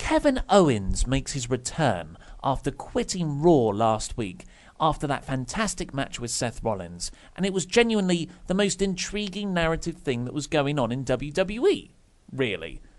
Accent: British